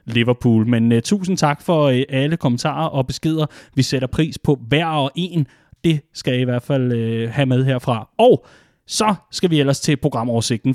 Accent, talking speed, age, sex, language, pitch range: native, 175 wpm, 30-49, male, Danish, 135-175 Hz